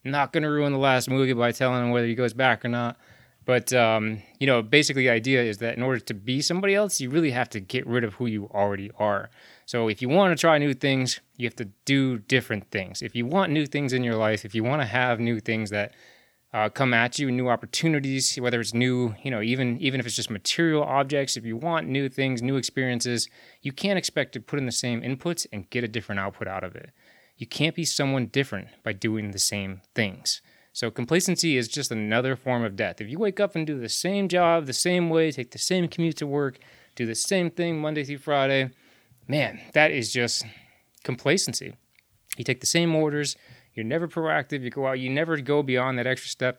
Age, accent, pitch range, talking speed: 20-39, American, 115-145 Hz, 230 wpm